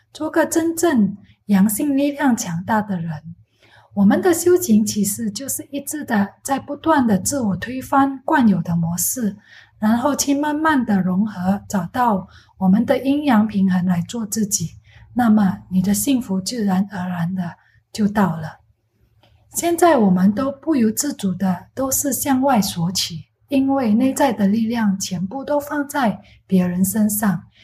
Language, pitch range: English, 185-265 Hz